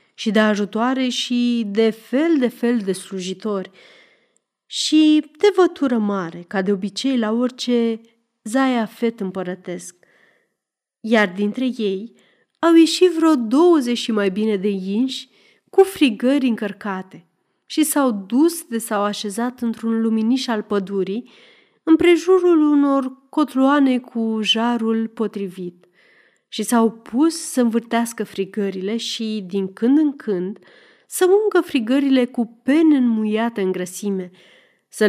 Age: 30-49